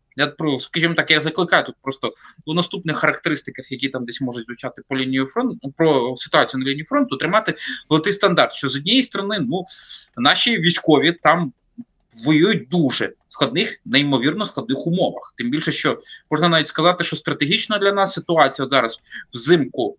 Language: Ukrainian